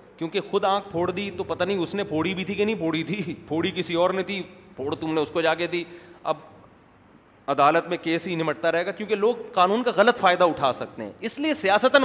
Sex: male